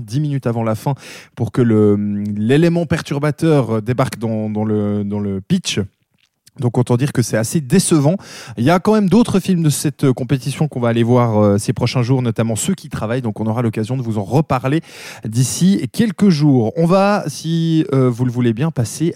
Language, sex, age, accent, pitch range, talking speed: French, male, 20-39, French, 120-160 Hz, 200 wpm